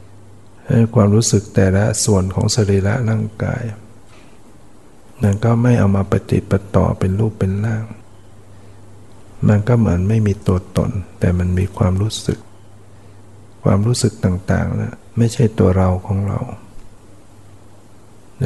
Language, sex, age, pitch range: Thai, male, 60-79, 100-110 Hz